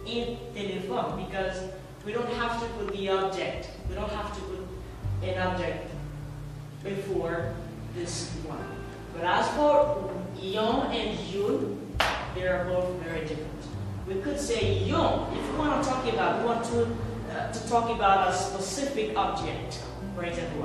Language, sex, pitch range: English, female, 160-250 Hz